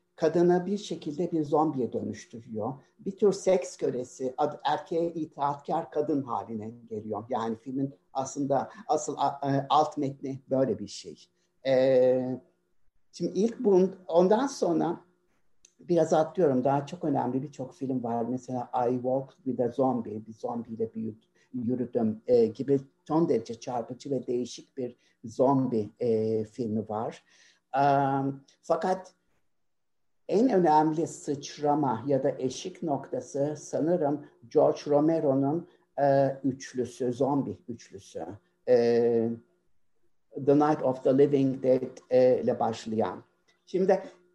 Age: 60-79